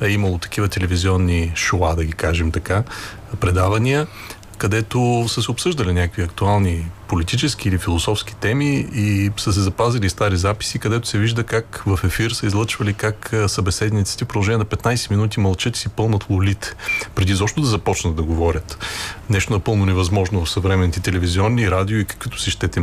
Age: 30-49